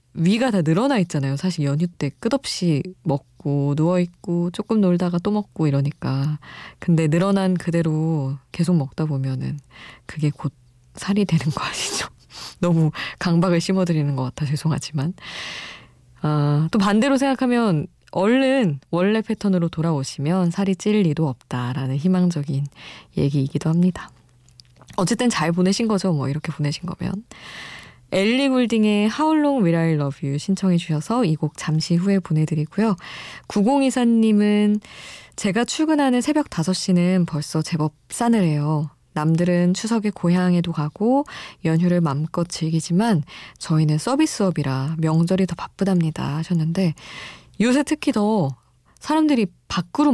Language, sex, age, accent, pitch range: Korean, female, 20-39, native, 150-200 Hz